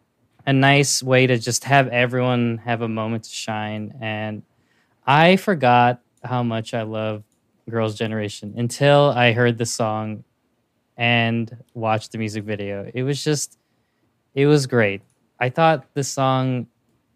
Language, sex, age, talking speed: English, male, 20-39, 145 wpm